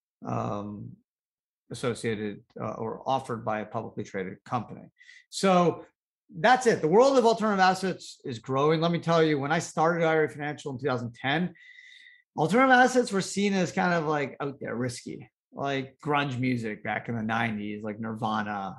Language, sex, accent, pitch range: English, male, American, 120-180 Hz